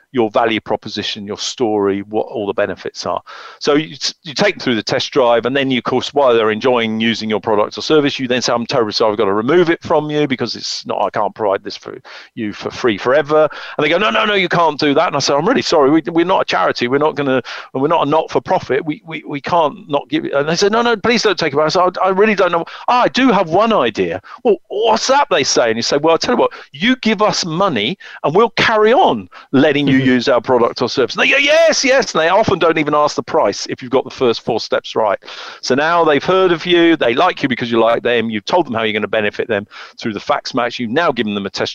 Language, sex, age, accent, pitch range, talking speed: English, male, 50-69, British, 120-170 Hz, 285 wpm